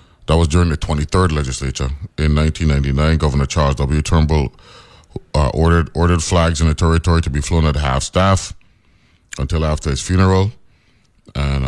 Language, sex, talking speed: English, male, 160 wpm